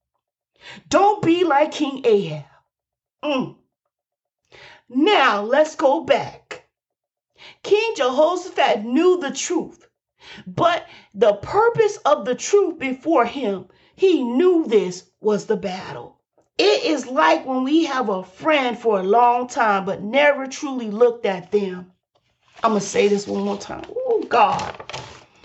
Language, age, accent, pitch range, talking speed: English, 40-59, American, 220-340 Hz, 135 wpm